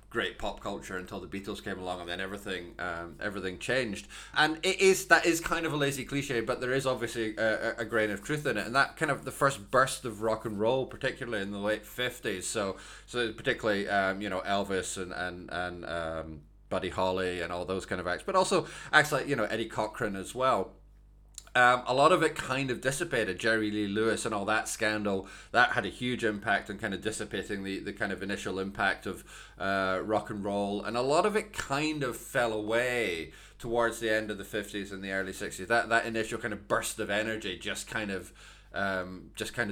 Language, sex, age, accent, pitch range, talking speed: English, male, 20-39, British, 95-125 Hz, 225 wpm